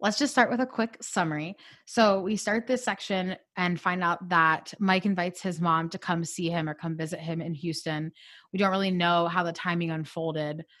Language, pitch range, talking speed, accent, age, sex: English, 160-185 Hz, 210 wpm, American, 20-39, female